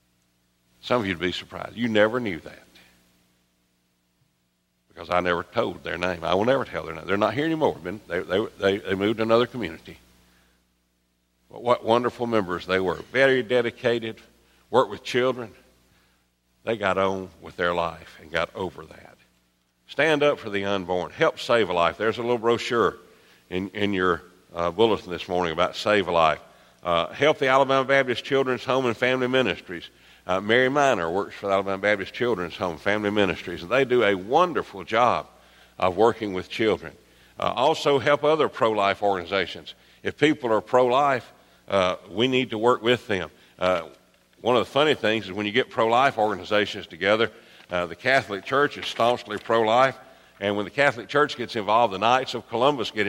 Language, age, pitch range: English, 60-79, 85-125 Hz